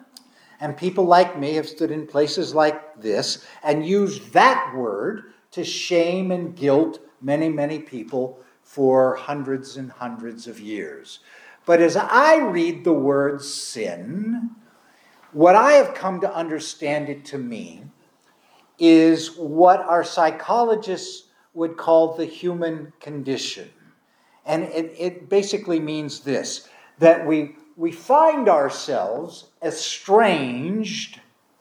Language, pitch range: English, 155-215 Hz